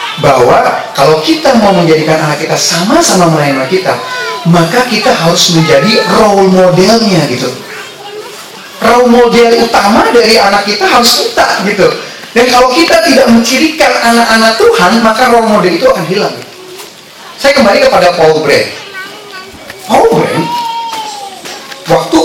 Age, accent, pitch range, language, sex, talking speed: 30-49, native, 165-250 Hz, Indonesian, male, 130 wpm